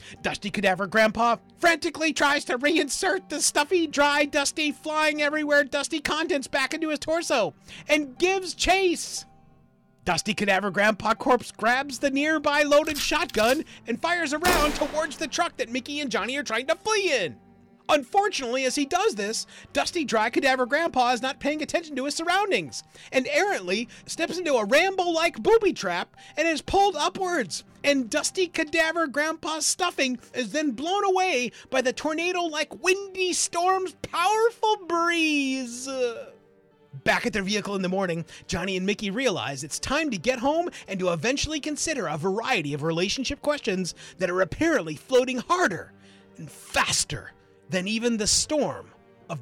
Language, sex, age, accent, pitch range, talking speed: English, male, 40-59, American, 195-320 Hz, 150 wpm